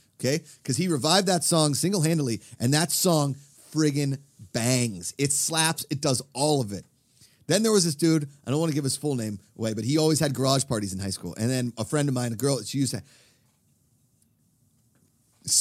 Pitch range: 130-210 Hz